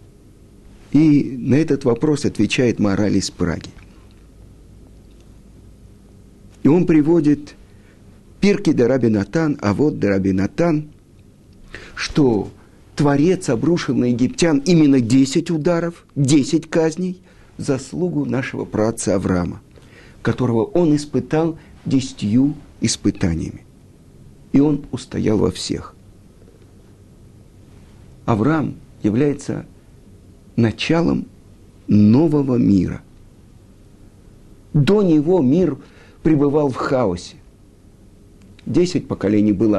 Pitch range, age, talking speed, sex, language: 100-150 Hz, 50-69, 85 wpm, male, Russian